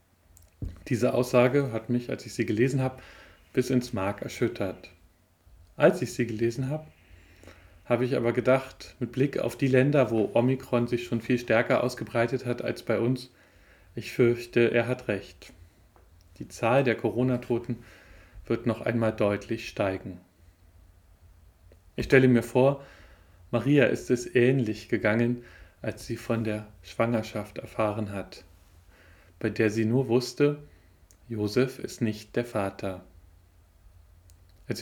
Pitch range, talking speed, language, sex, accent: 90-125 Hz, 135 wpm, German, male, German